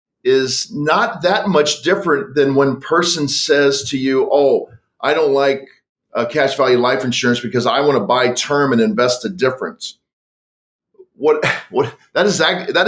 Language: English